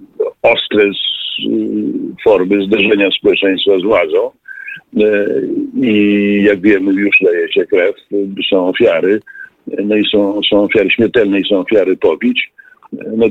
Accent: native